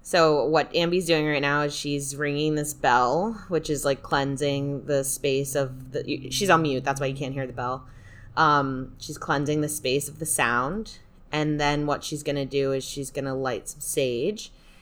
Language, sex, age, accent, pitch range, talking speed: English, female, 20-39, American, 145-170 Hz, 205 wpm